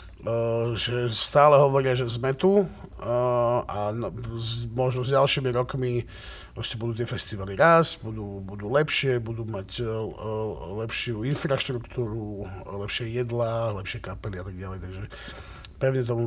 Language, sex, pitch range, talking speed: Slovak, male, 110-140 Hz, 120 wpm